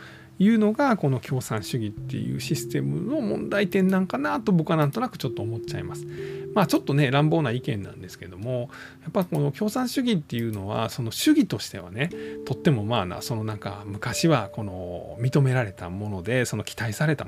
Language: Japanese